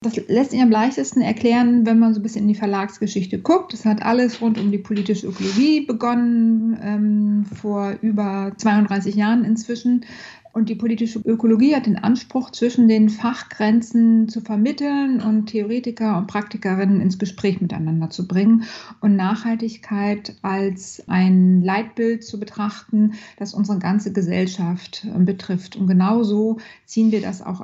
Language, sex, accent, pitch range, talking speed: German, female, German, 190-225 Hz, 150 wpm